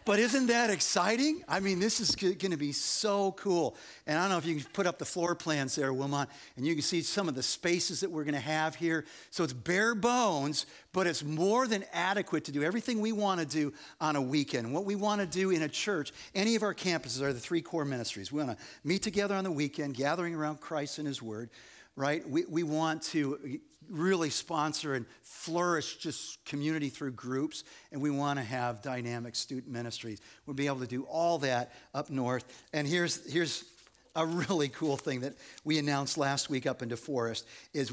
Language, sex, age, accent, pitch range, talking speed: English, male, 50-69, American, 135-170 Hz, 220 wpm